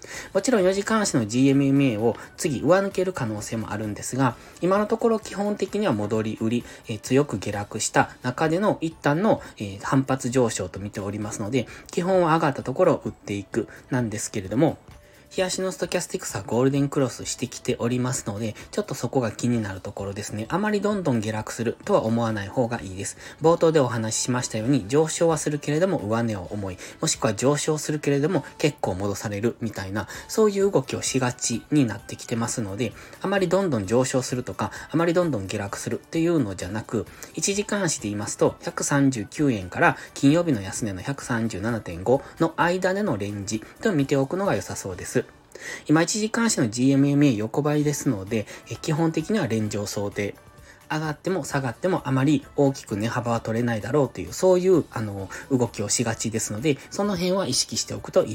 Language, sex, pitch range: Japanese, male, 110-155 Hz